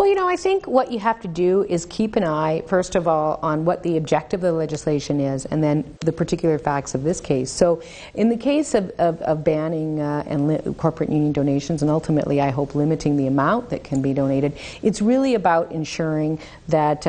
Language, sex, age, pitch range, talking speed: English, female, 50-69, 140-165 Hz, 220 wpm